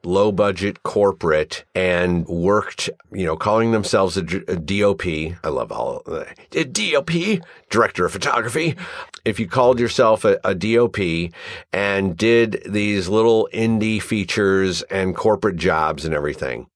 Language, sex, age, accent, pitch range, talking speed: English, male, 50-69, American, 90-120 Hz, 130 wpm